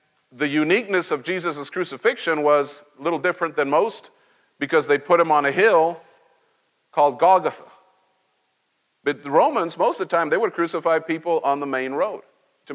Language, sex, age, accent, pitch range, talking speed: English, male, 50-69, American, 140-170 Hz, 170 wpm